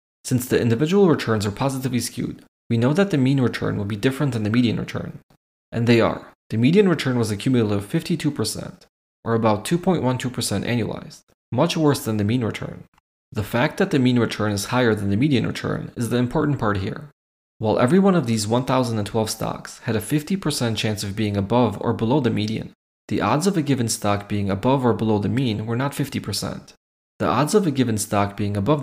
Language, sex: English, male